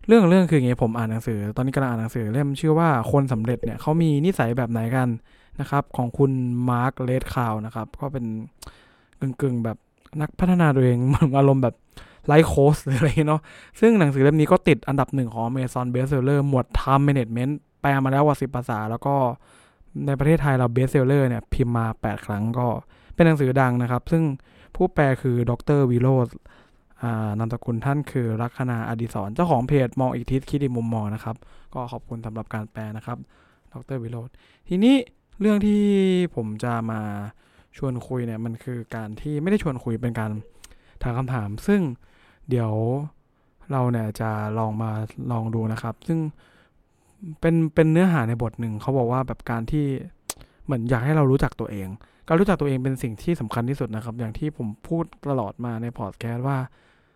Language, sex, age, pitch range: English, male, 20-39, 115-140 Hz